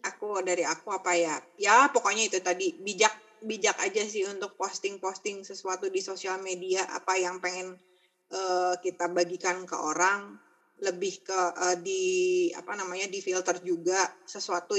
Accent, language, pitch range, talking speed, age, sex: native, Indonesian, 180-205 Hz, 155 wpm, 20-39, female